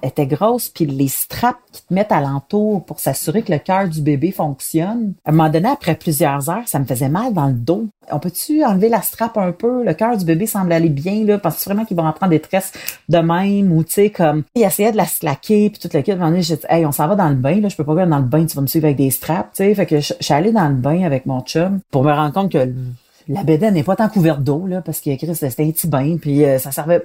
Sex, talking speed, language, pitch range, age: female, 295 wpm, French, 145-185 Hz, 40-59